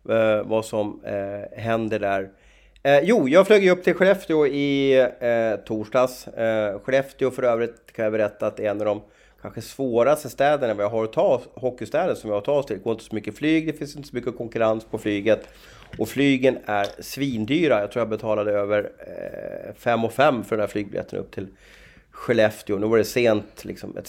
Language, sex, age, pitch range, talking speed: Swedish, male, 30-49, 105-130 Hz, 200 wpm